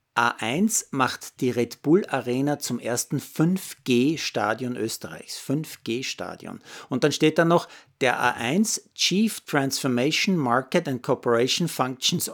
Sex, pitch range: male, 120-160 Hz